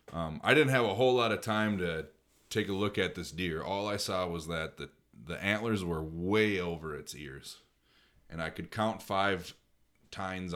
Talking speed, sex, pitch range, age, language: 200 wpm, male, 80-100 Hz, 30-49, English